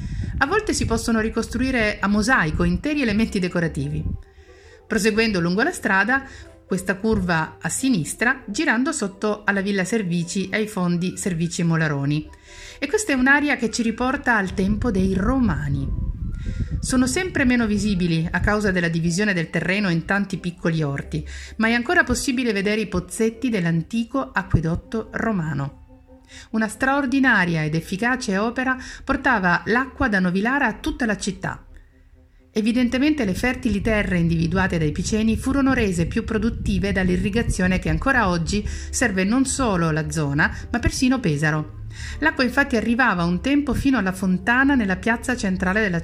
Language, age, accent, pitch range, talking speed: Italian, 50-69, native, 170-245 Hz, 145 wpm